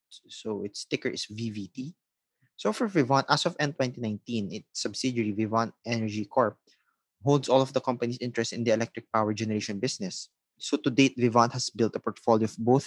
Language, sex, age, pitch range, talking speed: English, male, 20-39, 110-125 Hz, 180 wpm